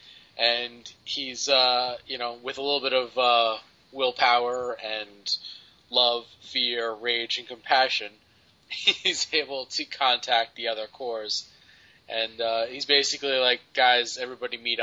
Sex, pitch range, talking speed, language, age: male, 110-130 Hz, 135 wpm, English, 20-39